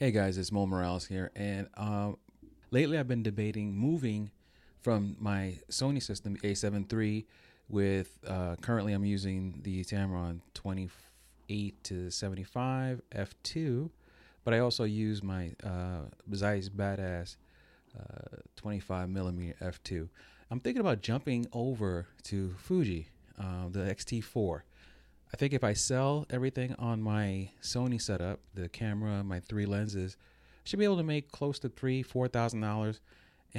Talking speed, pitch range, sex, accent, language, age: 140 wpm, 95-115 Hz, male, American, English, 30-49